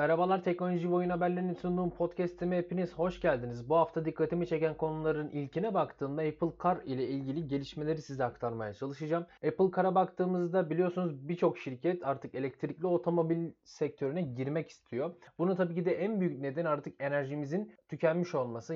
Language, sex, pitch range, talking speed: Turkish, male, 140-175 Hz, 150 wpm